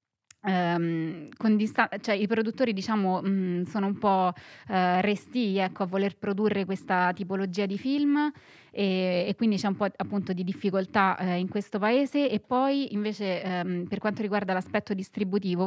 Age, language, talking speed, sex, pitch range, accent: 20-39, Italian, 165 wpm, female, 185-215 Hz, native